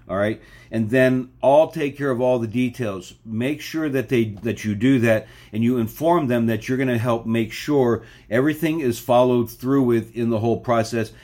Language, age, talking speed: English, 50-69, 210 wpm